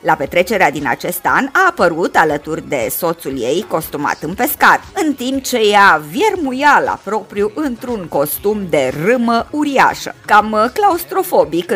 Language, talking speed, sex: Romanian, 145 wpm, female